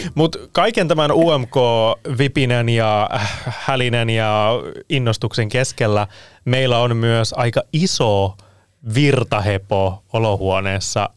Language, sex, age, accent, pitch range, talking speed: Finnish, male, 20-39, native, 100-125 Hz, 85 wpm